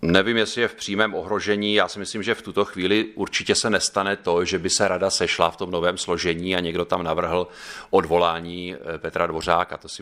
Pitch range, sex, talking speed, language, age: 85-95 Hz, male, 210 wpm, Czech, 30-49